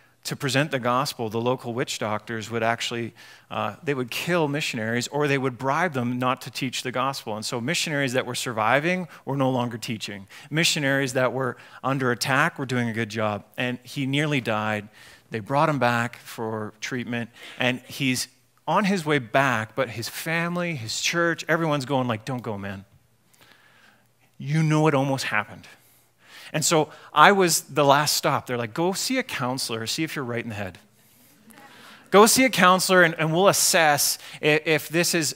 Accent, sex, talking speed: American, male, 185 wpm